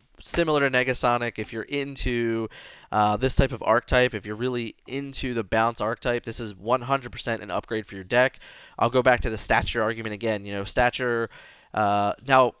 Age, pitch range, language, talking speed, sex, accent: 20-39, 110-130 Hz, English, 190 wpm, male, American